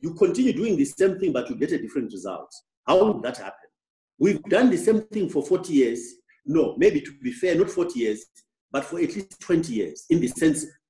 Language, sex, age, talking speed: English, male, 50-69, 225 wpm